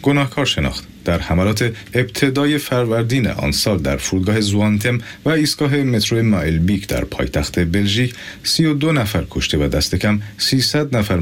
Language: Persian